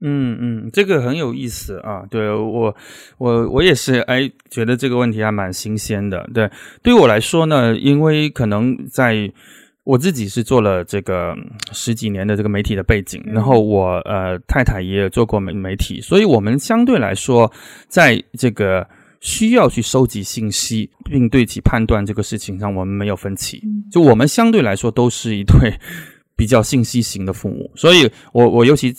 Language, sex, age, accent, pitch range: English, male, 20-39, Chinese, 100-125 Hz